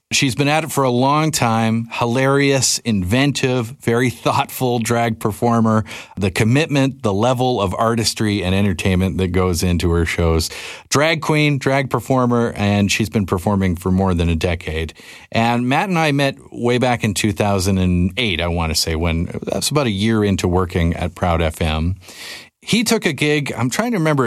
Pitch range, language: 90-120 Hz, English